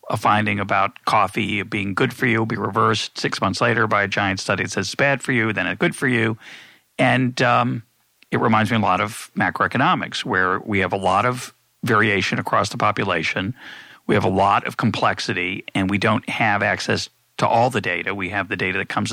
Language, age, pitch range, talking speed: English, 40-59, 100-115 Hz, 215 wpm